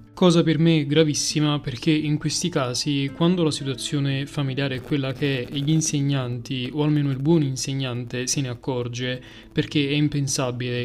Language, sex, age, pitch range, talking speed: Italian, male, 20-39, 130-160 Hz, 155 wpm